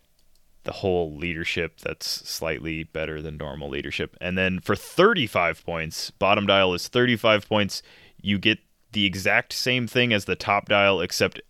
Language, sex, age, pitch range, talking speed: English, male, 20-39, 85-105 Hz, 155 wpm